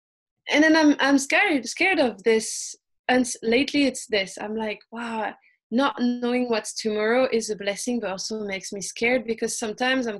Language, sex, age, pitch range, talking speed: English, female, 20-39, 205-250 Hz, 175 wpm